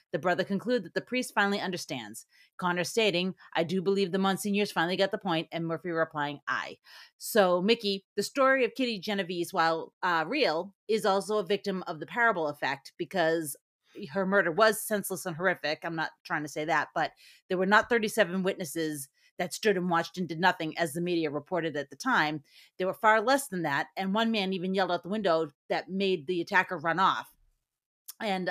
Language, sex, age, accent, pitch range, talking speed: English, female, 30-49, American, 165-200 Hz, 200 wpm